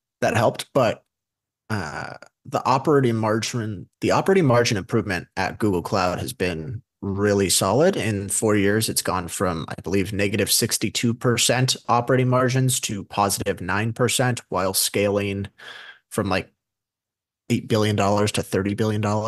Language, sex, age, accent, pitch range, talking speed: English, male, 30-49, American, 100-130 Hz, 130 wpm